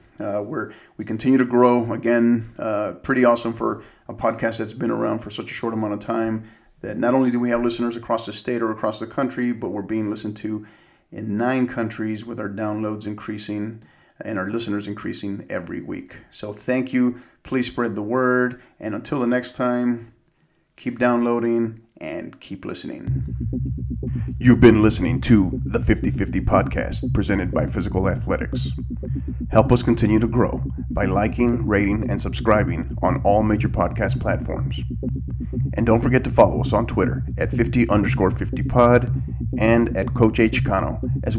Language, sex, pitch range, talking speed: English, male, 105-120 Hz, 165 wpm